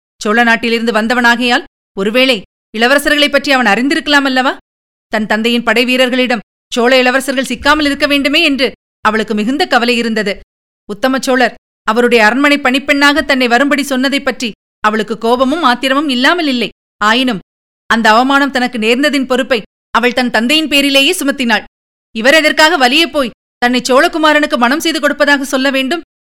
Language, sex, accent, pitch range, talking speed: Tamil, female, native, 240-290 Hz, 130 wpm